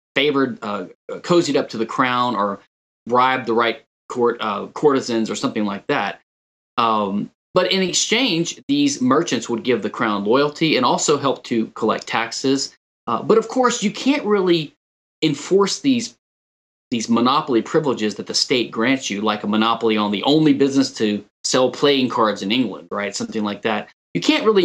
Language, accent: English, American